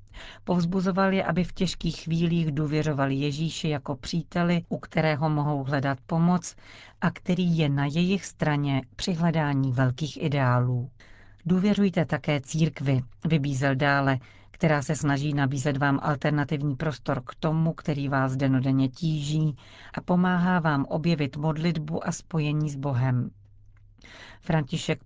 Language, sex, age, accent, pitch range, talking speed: Czech, female, 40-59, native, 135-170 Hz, 125 wpm